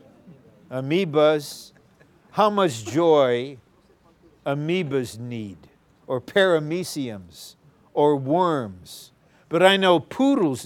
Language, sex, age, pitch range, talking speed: English, male, 60-79, 145-180 Hz, 80 wpm